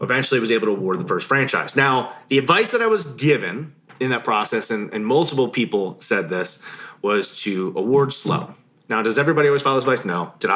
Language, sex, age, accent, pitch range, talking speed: English, male, 30-49, American, 125-160 Hz, 210 wpm